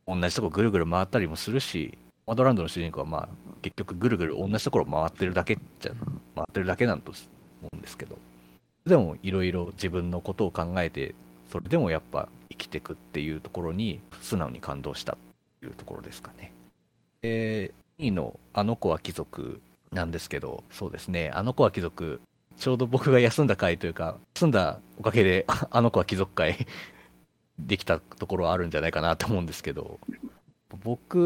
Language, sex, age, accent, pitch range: Japanese, male, 40-59, native, 80-115 Hz